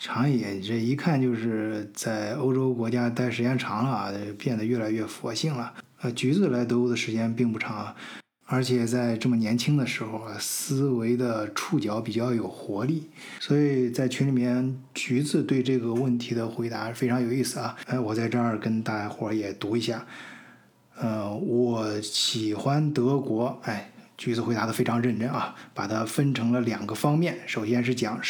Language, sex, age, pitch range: Chinese, male, 20-39, 115-130 Hz